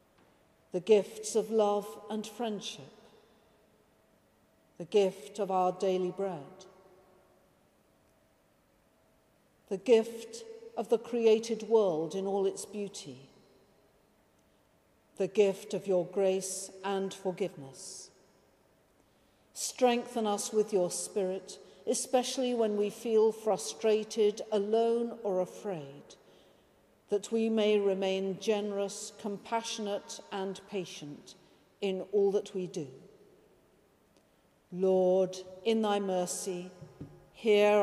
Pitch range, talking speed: 190-220 Hz, 95 wpm